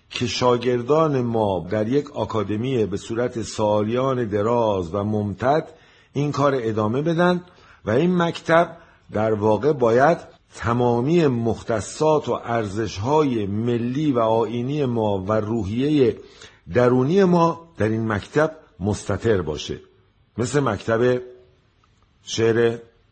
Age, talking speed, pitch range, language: 50-69, 110 wpm, 105-145 Hz, Persian